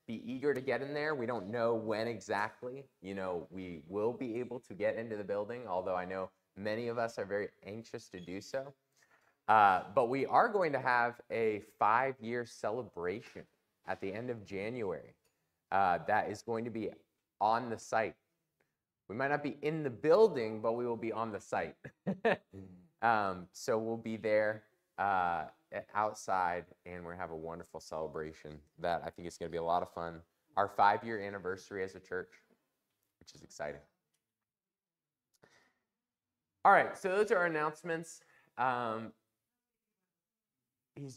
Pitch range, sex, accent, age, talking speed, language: 90-130 Hz, male, American, 20-39, 170 wpm, English